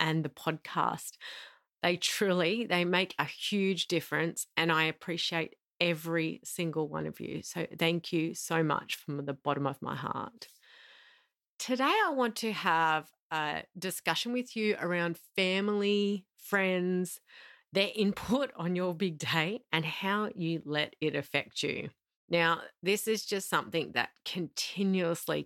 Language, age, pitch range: English, 30-49, 155-190 Hz